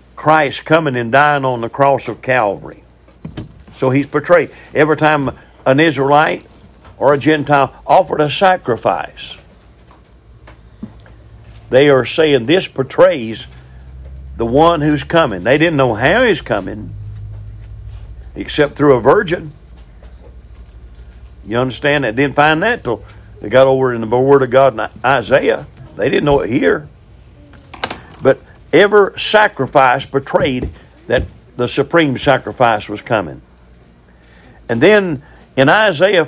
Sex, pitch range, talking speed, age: male, 105-150 Hz, 125 wpm, 50-69